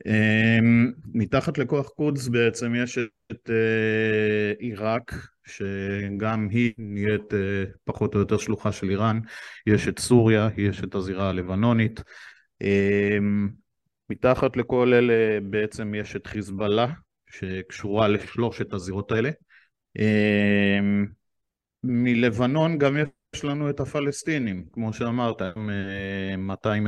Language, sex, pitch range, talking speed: Hebrew, male, 100-120 Hz, 110 wpm